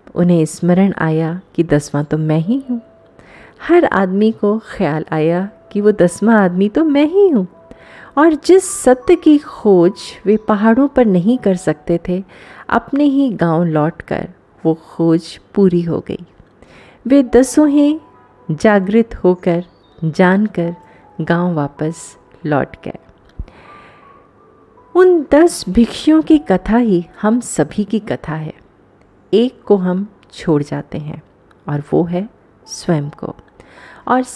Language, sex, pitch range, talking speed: Hindi, female, 165-235 Hz, 135 wpm